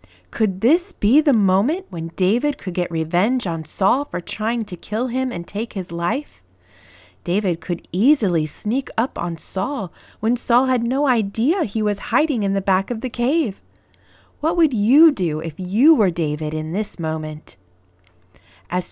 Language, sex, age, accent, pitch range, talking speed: English, female, 30-49, American, 175-235 Hz, 170 wpm